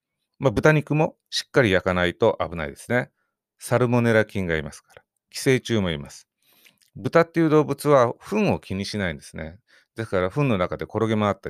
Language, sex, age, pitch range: Japanese, male, 40-59, 95-140 Hz